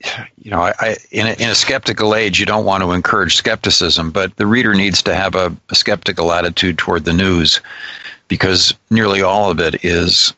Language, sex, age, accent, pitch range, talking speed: English, male, 50-69, American, 90-105 Hz, 185 wpm